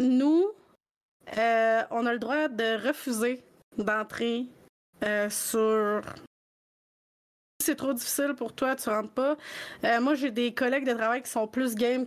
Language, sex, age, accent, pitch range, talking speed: French, female, 30-49, Canadian, 235-285 Hz, 150 wpm